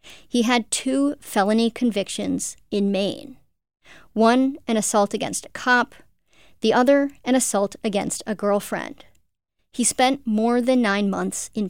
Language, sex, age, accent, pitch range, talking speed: English, male, 40-59, American, 215-250 Hz, 140 wpm